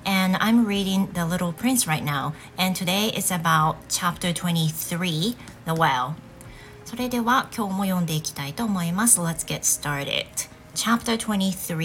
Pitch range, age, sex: 150-195 Hz, 30-49, female